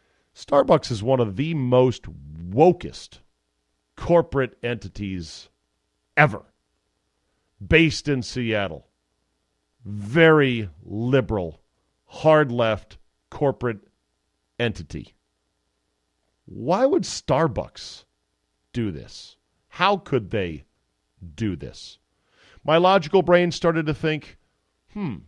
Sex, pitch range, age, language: male, 80-130 Hz, 50-69, English